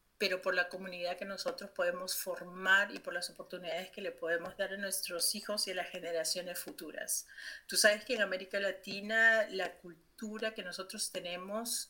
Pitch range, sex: 180-215 Hz, female